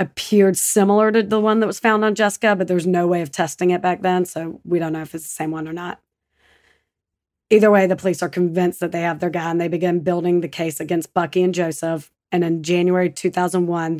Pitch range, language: 165-180 Hz, English